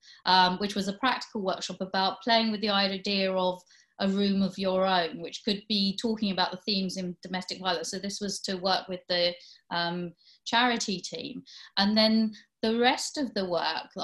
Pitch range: 180-210 Hz